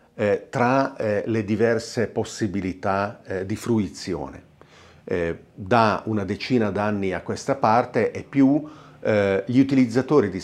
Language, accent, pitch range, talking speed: Italian, native, 100-125 Hz, 130 wpm